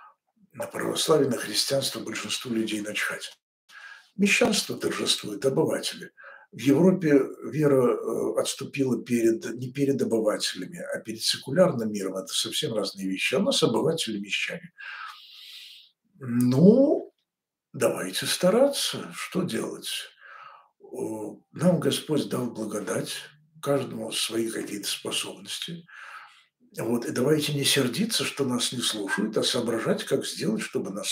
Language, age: Russian, 60-79